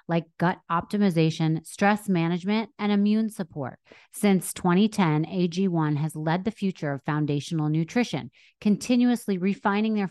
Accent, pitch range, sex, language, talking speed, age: American, 155-195 Hz, female, English, 125 wpm, 30-49